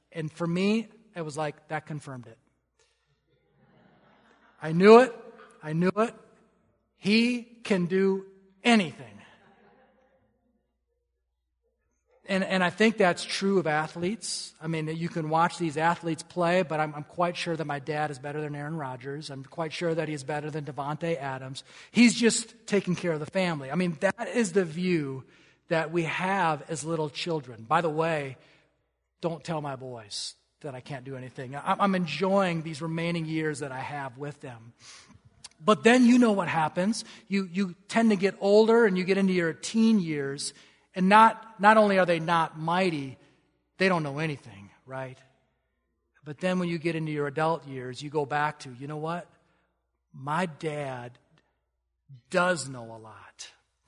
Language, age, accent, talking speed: English, 40-59, American, 170 wpm